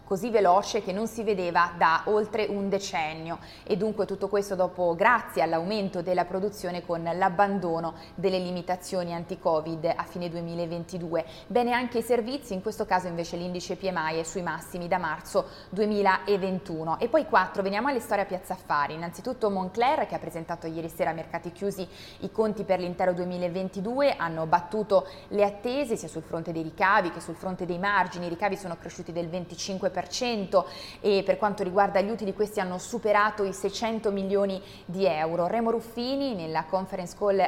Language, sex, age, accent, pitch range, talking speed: Italian, female, 20-39, native, 170-200 Hz, 170 wpm